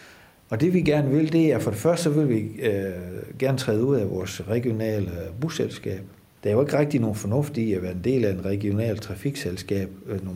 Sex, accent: male, native